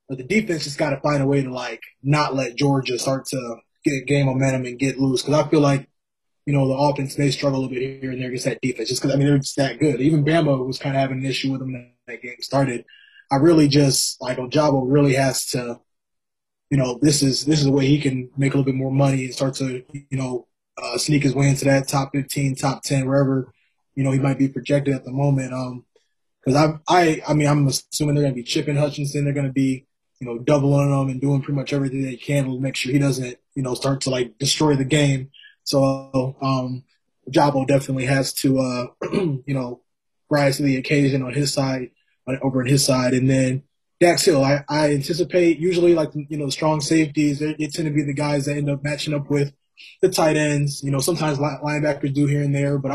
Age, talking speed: 20-39, 245 wpm